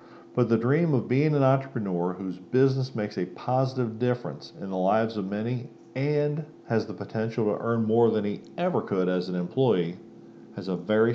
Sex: male